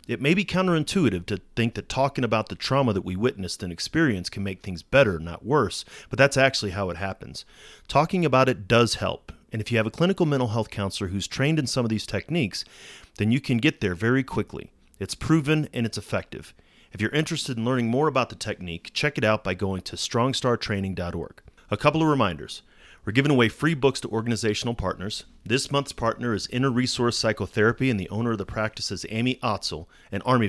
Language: English